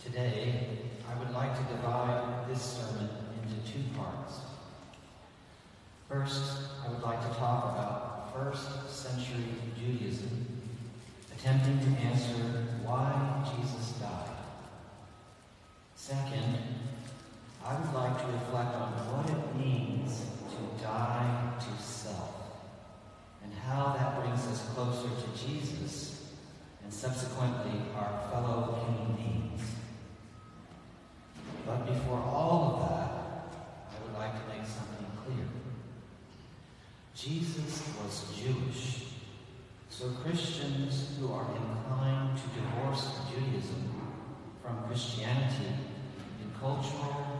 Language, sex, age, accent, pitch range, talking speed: English, male, 40-59, American, 115-130 Hz, 105 wpm